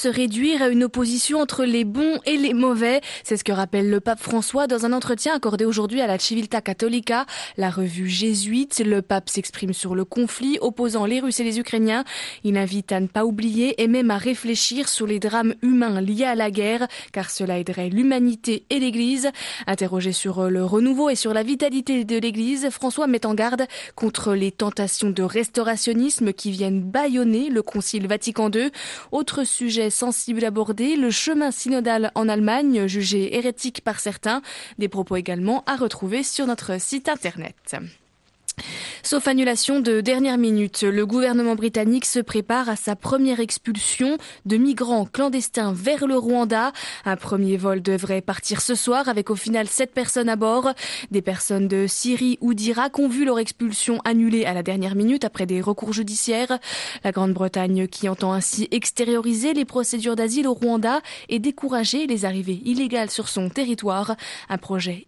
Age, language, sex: 20-39, French, female